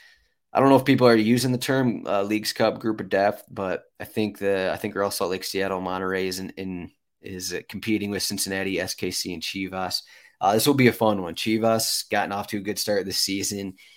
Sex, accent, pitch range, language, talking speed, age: male, American, 95-120 Hz, English, 230 wpm, 20-39